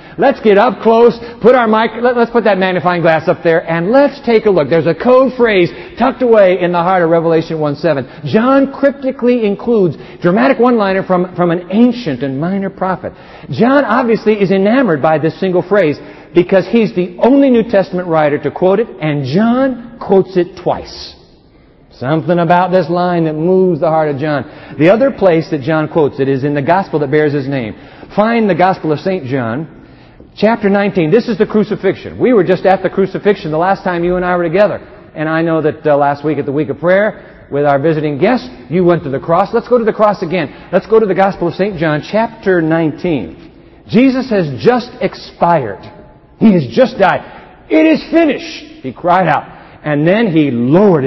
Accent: American